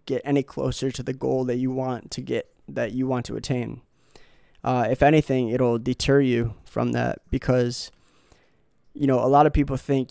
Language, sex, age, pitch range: English, male, 20-39, 125-145 Hz